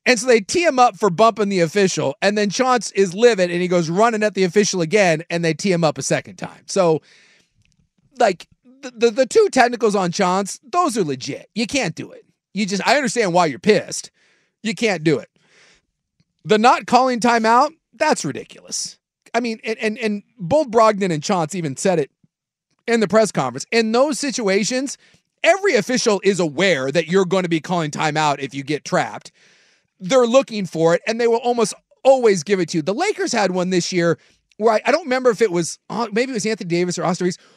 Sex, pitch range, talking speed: male, 180-255 Hz, 210 wpm